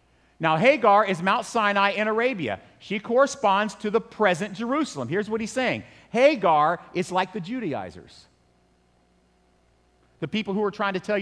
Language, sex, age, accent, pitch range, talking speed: English, male, 50-69, American, 140-230 Hz, 155 wpm